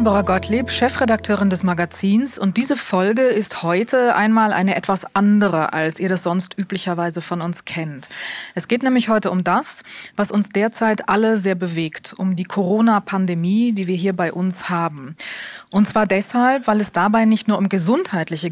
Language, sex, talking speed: German, female, 180 wpm